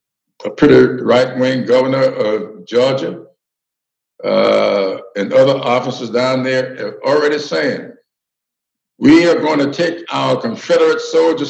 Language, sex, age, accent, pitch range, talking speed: English, male, 60-79, American, 140-205 Hz, 125 wpm